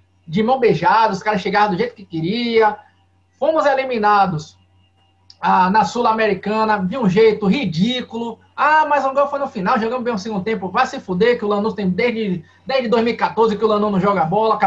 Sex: male